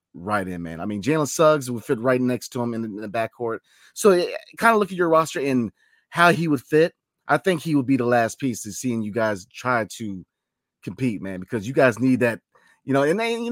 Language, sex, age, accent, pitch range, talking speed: English, male, 30-49, American, 110-140 Hz, 250 wpm